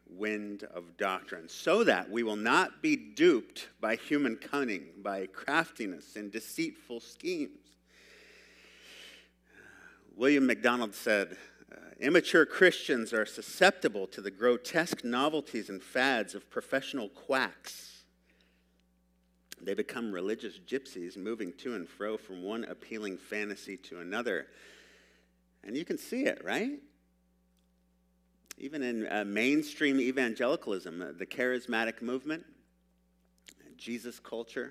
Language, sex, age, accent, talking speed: English, male, 50-69, American, 110 wpm